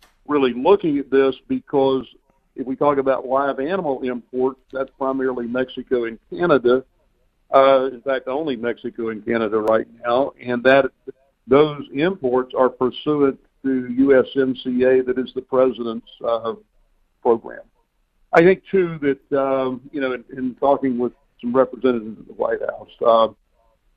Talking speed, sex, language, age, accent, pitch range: 145 wpm, male, English, 50-69, American, 115-135 Hz